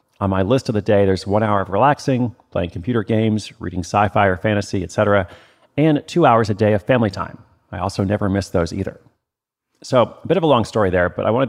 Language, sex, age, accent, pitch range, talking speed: English, male, 30-49, American, 90-110 Hz, 230 wpm